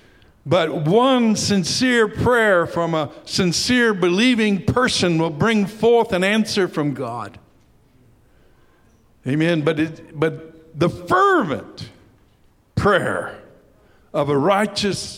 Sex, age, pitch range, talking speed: male, 60-79, 135-190 Hz, 100 wpm